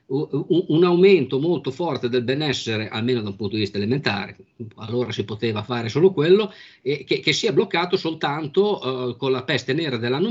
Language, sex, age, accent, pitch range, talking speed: Italian, male, 50-69, native, 125-155 Hz, 185 wpm